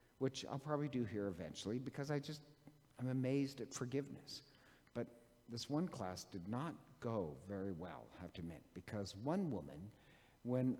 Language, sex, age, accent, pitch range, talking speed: English, male, 60-79, American, 115-150 Hz, 165 wpm